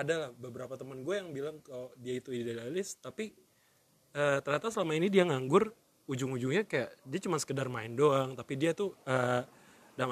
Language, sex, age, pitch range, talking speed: Indonesian, male, 20-39, 125-155 Hz, 170 wpm